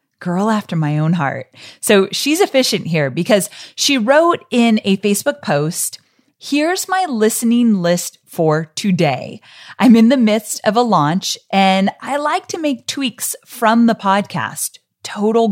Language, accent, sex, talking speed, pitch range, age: English, American, female, 150 wpm, 170-245 Hz, 30-49